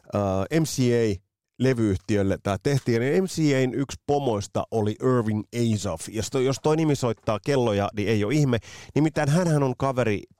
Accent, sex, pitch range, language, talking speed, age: native, male, 95-130 Hz, Finnish, 140 wpm, 30-49